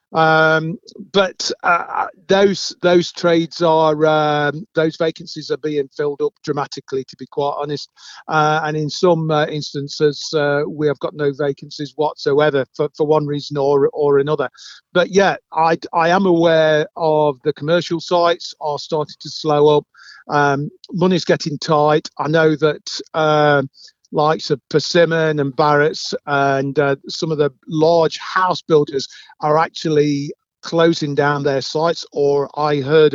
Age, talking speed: 40-59, 150 wpm